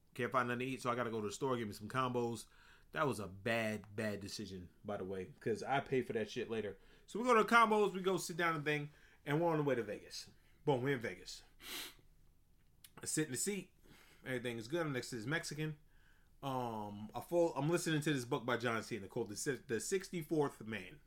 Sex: male